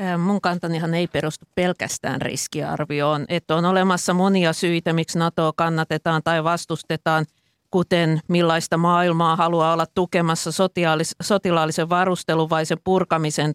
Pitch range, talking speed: 155-185 Hz, 120 wpm